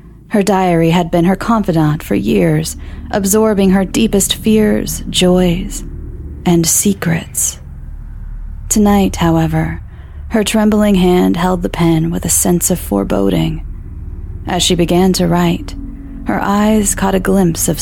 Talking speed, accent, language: 130 wpm, American, English